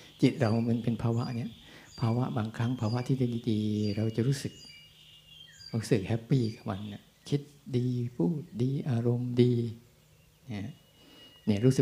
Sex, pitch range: male, 110-135 Hz